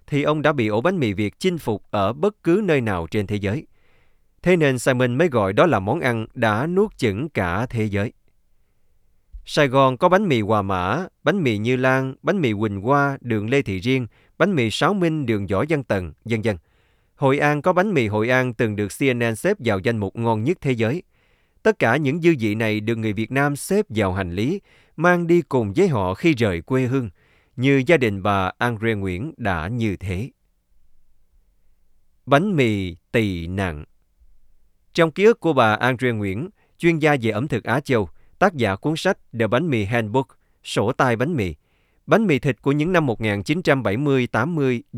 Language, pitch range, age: Vietnamese, 105-145 Hz, 20-39